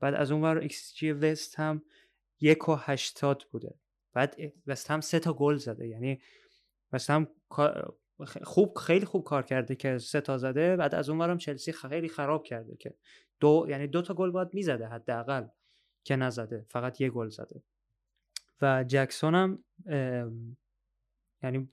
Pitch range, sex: 125-155 Hz, male